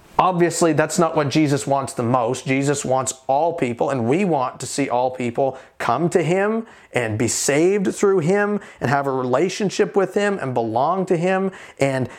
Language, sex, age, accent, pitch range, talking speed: English, male, 40-59, American, 135-180 Hz, 185 wpm